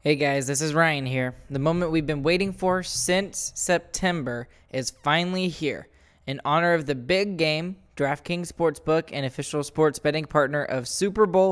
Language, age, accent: English, 10-29, American